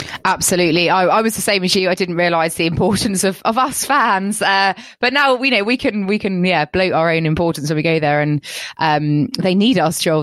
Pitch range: 155-205 Hz